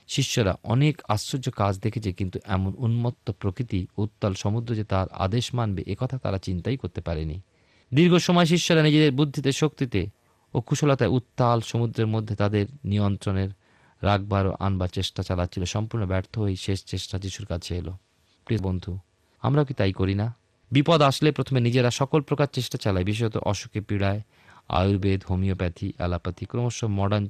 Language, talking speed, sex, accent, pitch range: Bengali, 150 wpm, male, native, 95-120 Hz